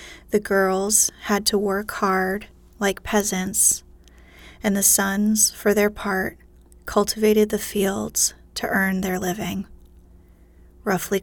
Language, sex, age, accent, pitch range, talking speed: English, female, 30-49, American, 185-210 Hz, 120 wpm